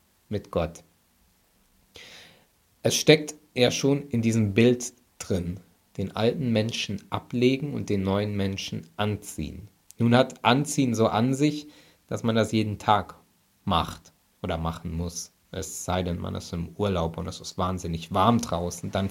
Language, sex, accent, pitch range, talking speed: German, male, German, 90-120 Hz, 150 wpm